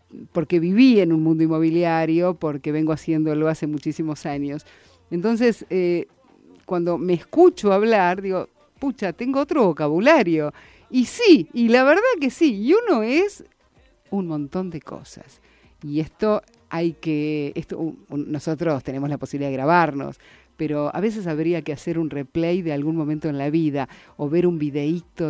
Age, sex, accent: 50-69, female, Argentinian